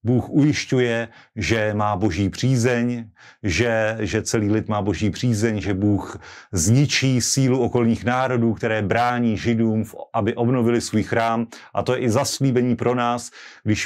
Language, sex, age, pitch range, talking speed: Slovak, male, 30-49, 110-125 Hz, 145 wpm